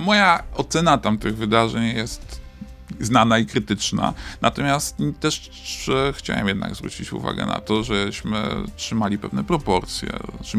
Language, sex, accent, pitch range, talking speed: Polish, male, native, 100-125 Hz, 120 wpm